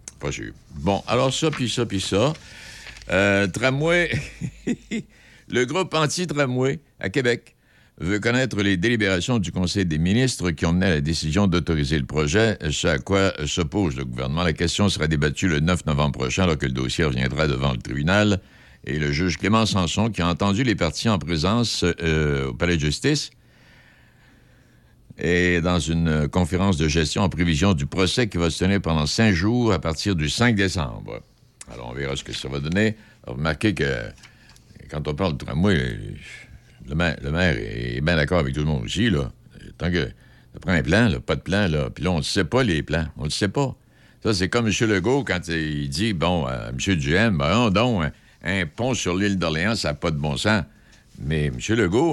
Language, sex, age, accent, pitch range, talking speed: French, male, 60-79, French, 75-110 Hz, 205 wpm